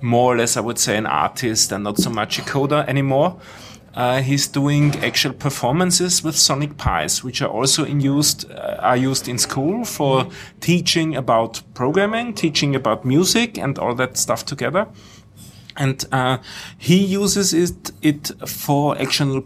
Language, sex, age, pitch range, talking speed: German, male, 30-49, 125-150 Hz, 165 wpm